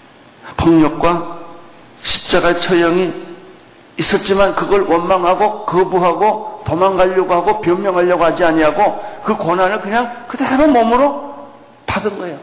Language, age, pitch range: Korean, 60-79, 160-195 Hz